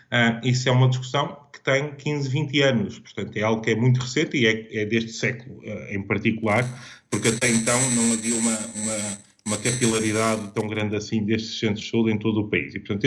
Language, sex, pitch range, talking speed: Portuguese, male, 110-130 Hz, 210 wpm